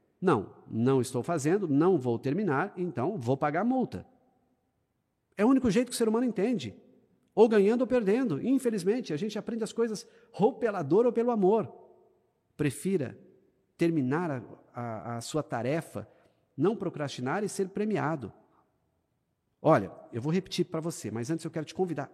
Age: 50-69